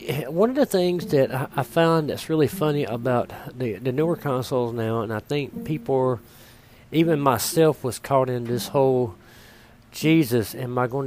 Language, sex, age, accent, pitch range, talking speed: English, male, 40-59, American, 120-155 Hz, 175 wpm